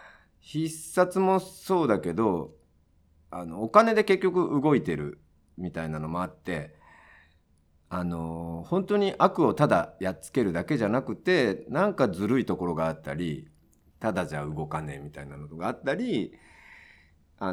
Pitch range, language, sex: 75-130 Hz, Japanese, male